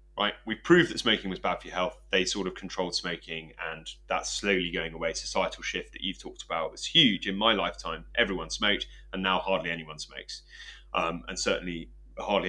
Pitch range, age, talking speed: 85-110 Hz, 30-49, 200 wpm